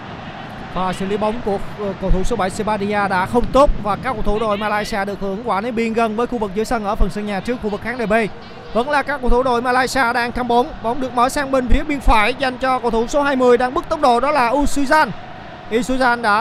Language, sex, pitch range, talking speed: Vietnamese, male, 205-250 Hz, 265 wpm